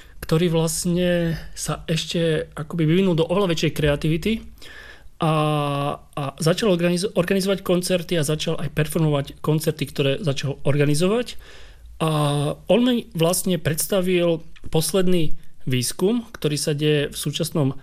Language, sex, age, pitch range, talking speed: Czech, male, 40-59, 140-175 Hz, 110 wpm